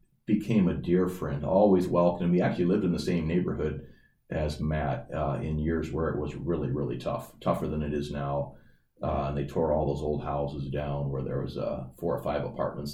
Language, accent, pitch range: English, American, 75-90 Hz